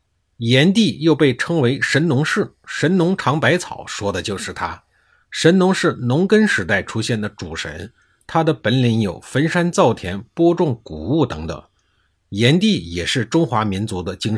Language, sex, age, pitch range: Chinese, male, 50-69, 95-155 Hz